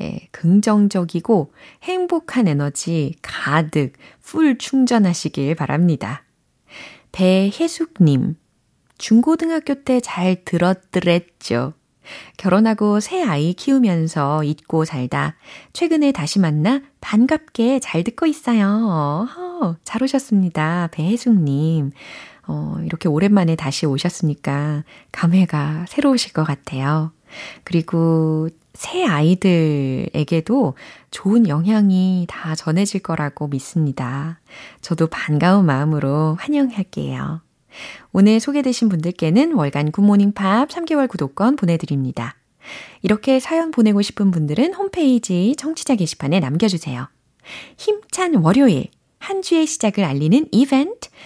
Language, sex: Korean, female